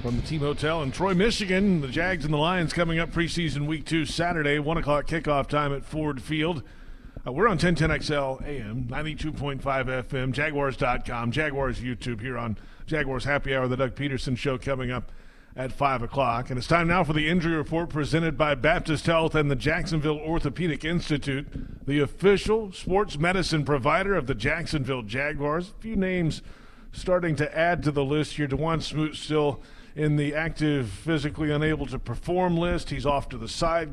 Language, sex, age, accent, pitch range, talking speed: English, male, 40-59, American, 135-160 Hz, 175 wpm